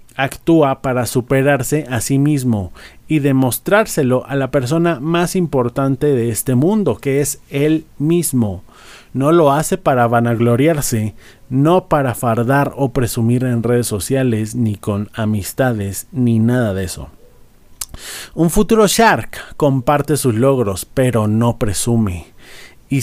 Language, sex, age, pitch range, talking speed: Spanish, male, 30-49, 115-145 Hz, 130 wpm